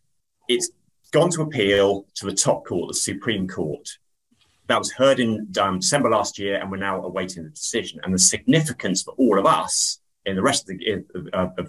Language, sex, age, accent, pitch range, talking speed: English, male, 30-49, British, 90-115 Hz, 190 wpm